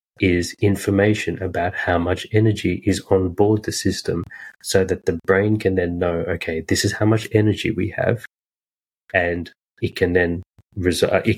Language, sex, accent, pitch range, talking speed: English, male, Australian, 90-100 Hz, 170 wpm